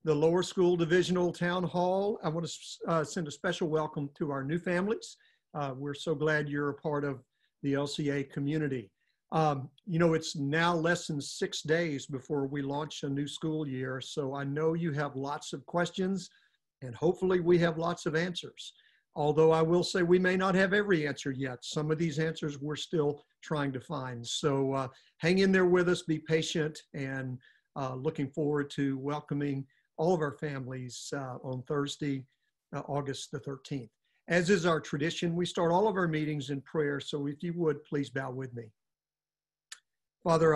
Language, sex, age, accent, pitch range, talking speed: English, male, 50-69, American, 135-165 Hz, 190 wpm